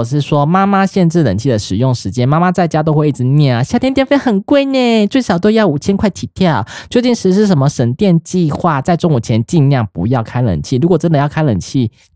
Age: 20-39